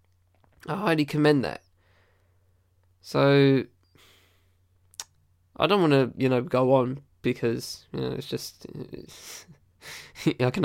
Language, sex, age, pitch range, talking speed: English, male, 10-29, 120-140 Hz, 120 wpm